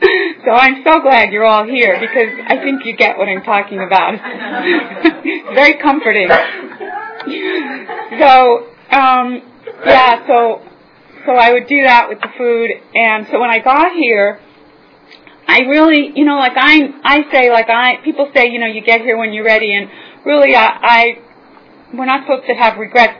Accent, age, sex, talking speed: American, 30-49, female, 170 wpm